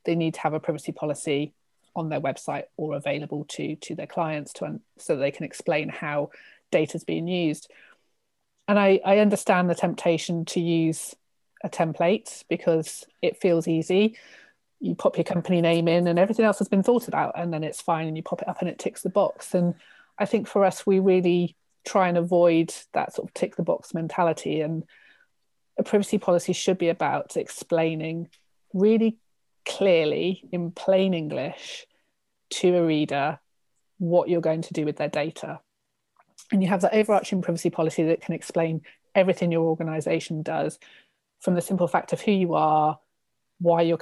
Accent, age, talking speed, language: British, 30-49, 180 wpm, English